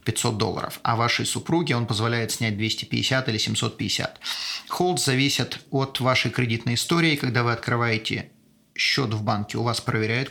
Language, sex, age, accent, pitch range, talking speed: Russian, male, 30-49, native, 110-135 Hz, 150 wpm